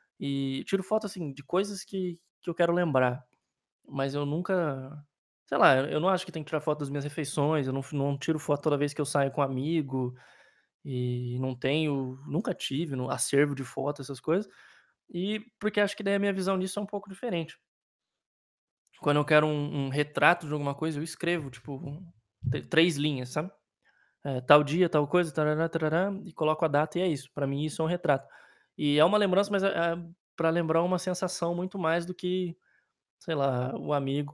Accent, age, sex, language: Brazilian, 20-39, male, Portuguese